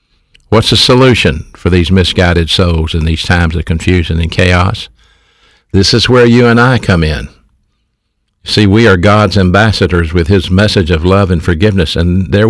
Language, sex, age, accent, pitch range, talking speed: English, male, 50-69, American, 85-105 Hz, 175 wpm